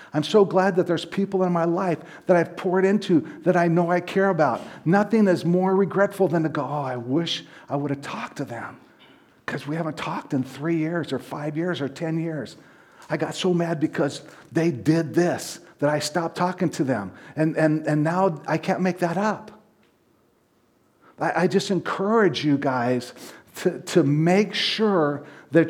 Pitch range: 145-180 Hz